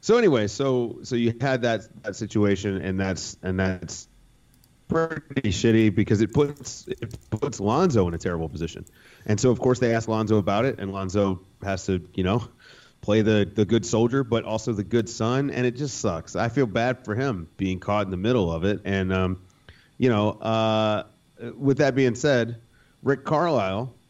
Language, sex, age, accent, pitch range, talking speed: English, male, 30-49, American, 95-120 Hz, 190 wpm